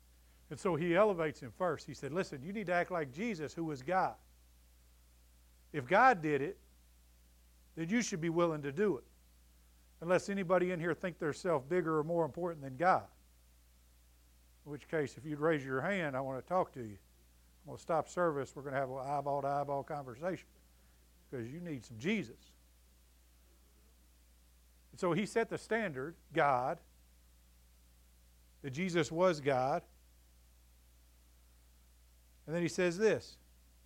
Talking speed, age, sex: 160 wpm, 50-69, male